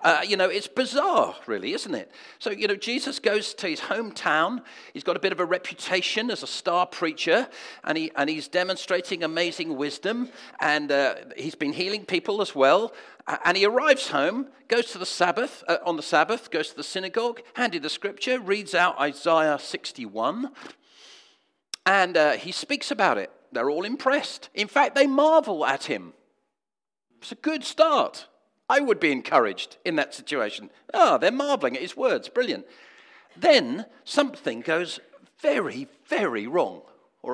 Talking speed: 170 wpm